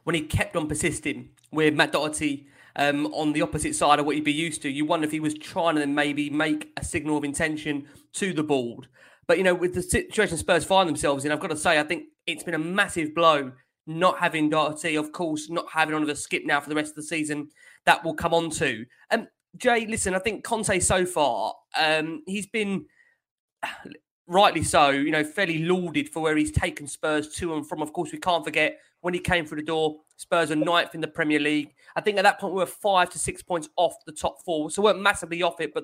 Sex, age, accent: male, 20-39, British